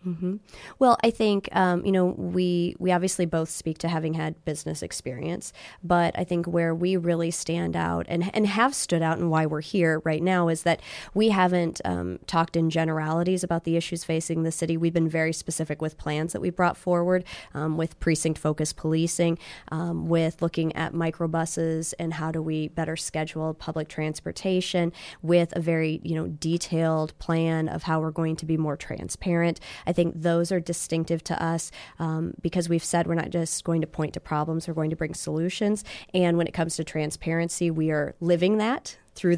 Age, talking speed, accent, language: 20-39, 195 wpm, American, English